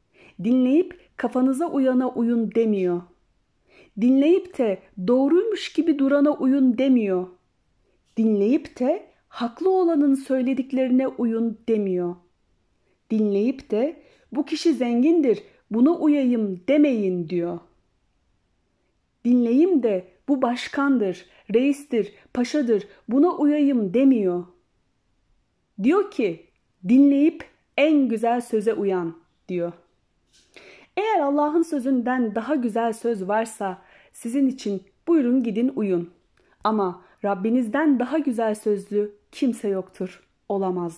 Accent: native